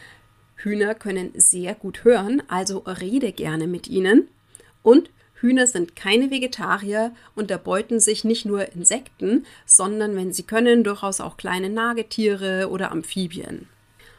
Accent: German